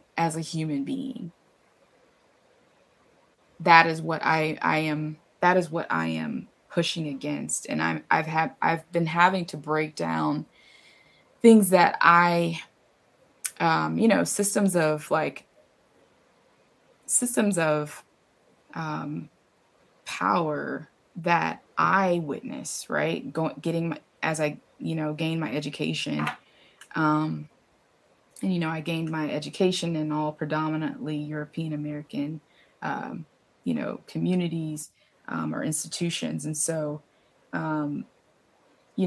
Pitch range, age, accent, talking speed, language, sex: 150-170 Hz, 20-39, American, 115 wpm, English, female